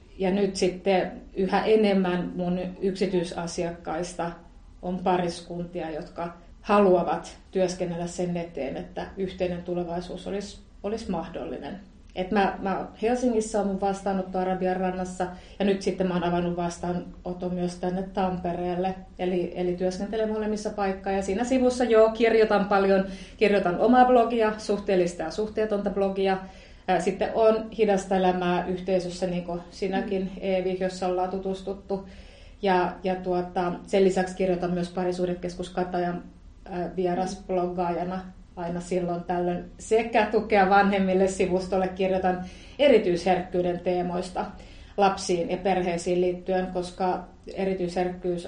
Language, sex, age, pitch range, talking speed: Finnish, female, 30-49, 180-195 Hz, 115 wpm